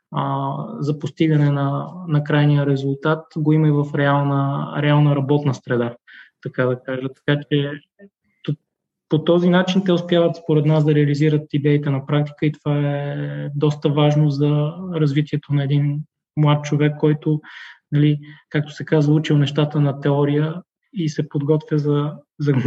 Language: Bulgarian